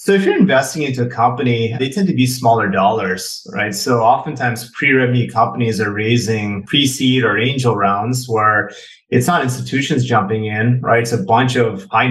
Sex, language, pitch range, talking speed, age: male, English, 110-125 Hz, 180 wpm, 30-49